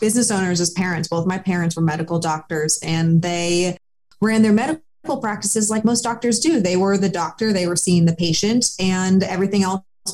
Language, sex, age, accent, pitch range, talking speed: English, female, 20-39, American, 165-195 Hz, 190 wpm